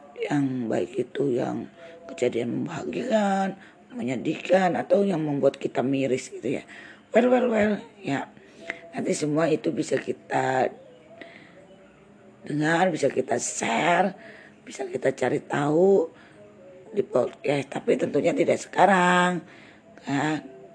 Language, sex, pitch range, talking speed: Indonesian, female, 145-195 Hz, 115 wpm